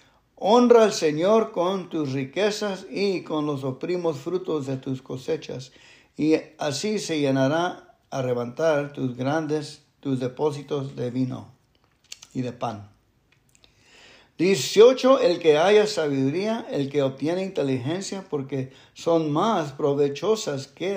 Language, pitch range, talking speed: English, 135-180 Hz, 125 wpm